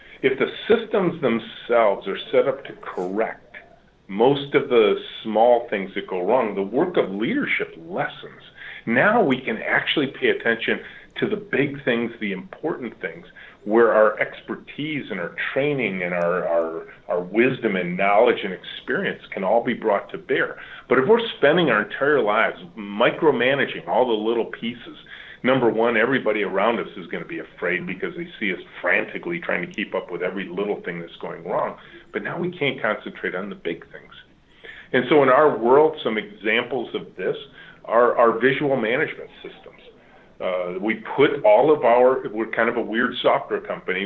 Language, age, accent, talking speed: English, 40-59, American, 175 wpm